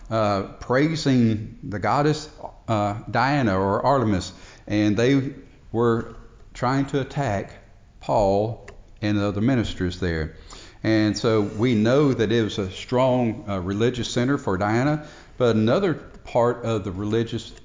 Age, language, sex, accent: 50-69, English, male, American